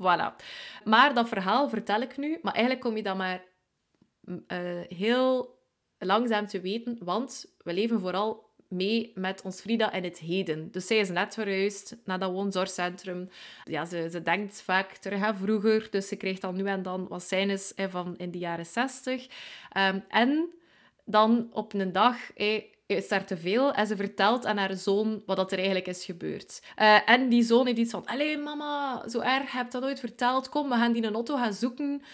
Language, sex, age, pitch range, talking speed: Dutch, female, 20-39, 185-230 Hz, 200 wpm